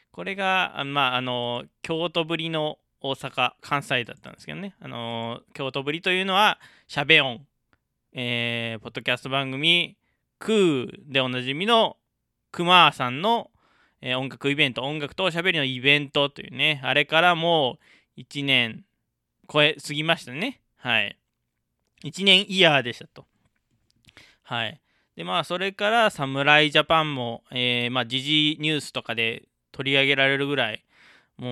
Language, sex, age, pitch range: Japanese, male, 20-39, 120-160 Hz